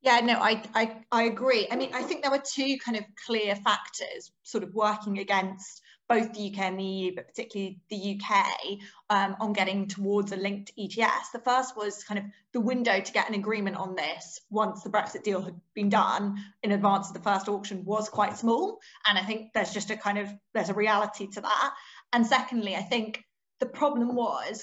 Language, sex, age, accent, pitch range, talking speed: English, female, 20-39, British, 195-225 Hz, 215 wpm